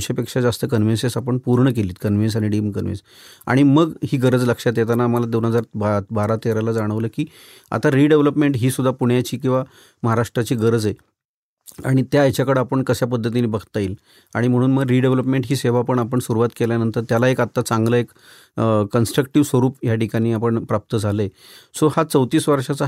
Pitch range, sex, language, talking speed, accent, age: 115-135 Hz, male, Marathi, 150 wpm, native, 40-59